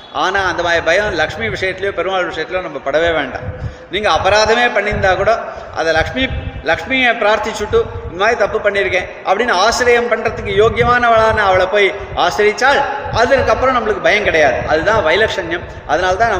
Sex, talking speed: male, 135 wpm